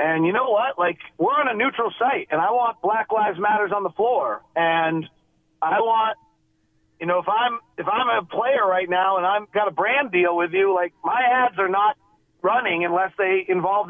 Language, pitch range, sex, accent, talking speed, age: English, 175-215 Hz, male, American, 210 wpm, 40-59